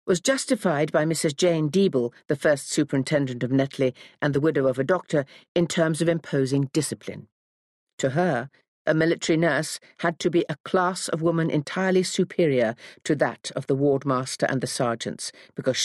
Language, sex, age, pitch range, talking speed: English, female, 50-69, 135-175 Hz, 170 wpm